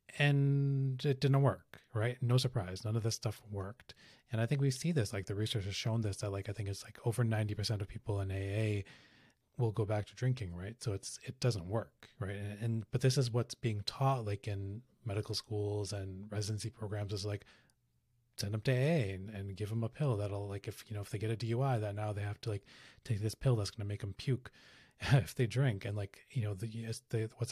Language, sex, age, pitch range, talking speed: English, male, 30-49, 105-125 Hz, 240 wpm